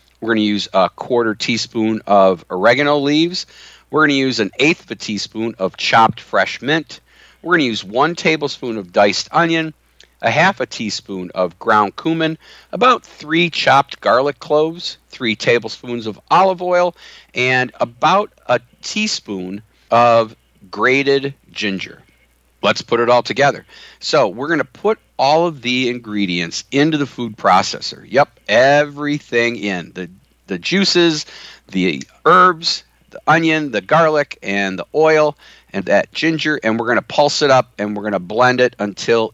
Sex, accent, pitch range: male, American, 105-150 Hz